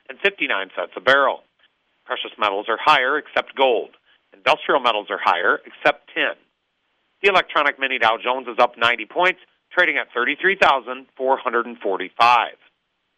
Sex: male